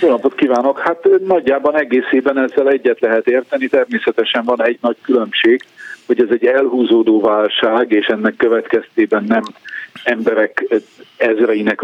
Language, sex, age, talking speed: Hungarian, male, 50-69, 135 wpm